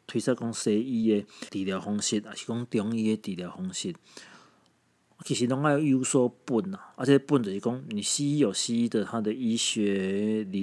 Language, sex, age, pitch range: Chinese, male, 40-59, 105-160 Hz